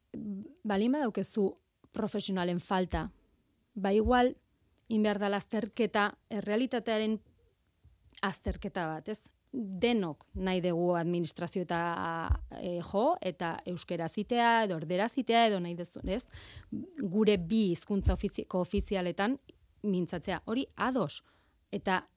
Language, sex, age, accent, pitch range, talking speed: Spanish, female, 30-49, Spanish, 175-220 Hz, 110 wpm